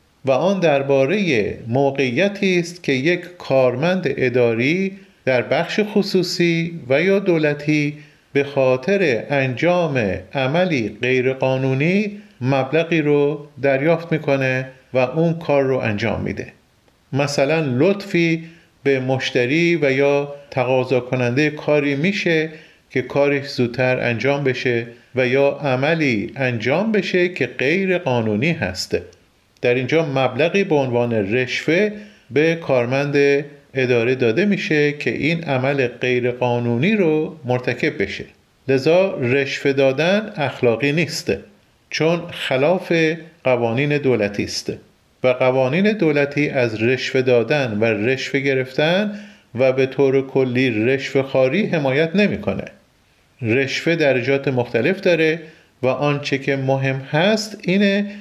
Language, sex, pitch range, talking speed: Persian, male, 130-165 Hz, 110 wpm